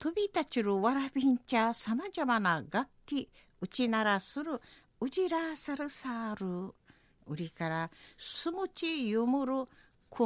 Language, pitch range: Japanese, 210-300 Hz